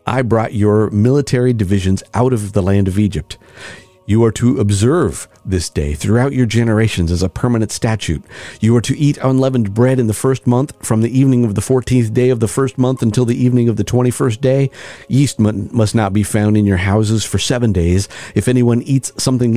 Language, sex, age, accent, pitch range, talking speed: English, male, 50-69, American, 95-120 Hz, 205 wpm